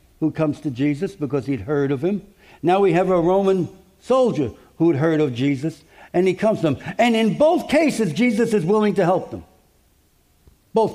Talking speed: 190 wpm